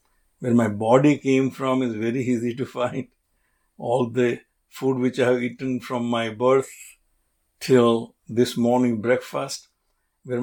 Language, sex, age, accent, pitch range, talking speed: English, male, 60-79, Indian, 120-145 Hz, 145 wpm